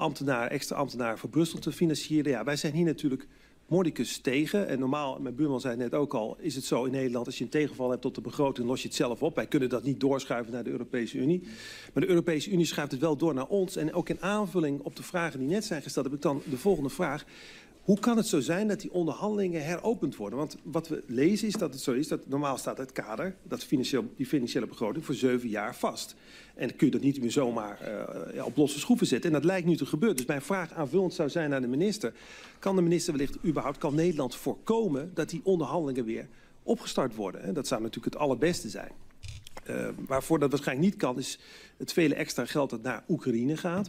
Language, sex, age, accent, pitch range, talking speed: Dutch, male, 40-59, Dutch, 135-175 Hz, 235 wpm